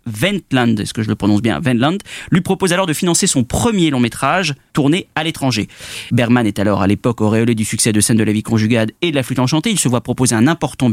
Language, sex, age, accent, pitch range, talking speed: French, male, 30-49, French, 115-155 Hz, 245 wpm